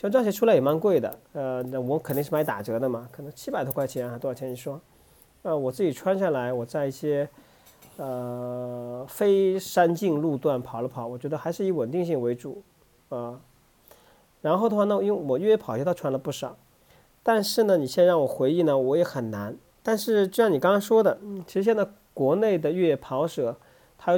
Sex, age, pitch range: male, 40-59, 125-180 Hz